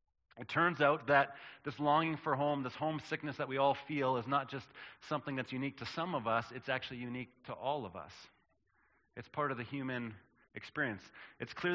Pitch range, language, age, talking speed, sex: 130-155 Hz, English, 30-49, 200 wpm, male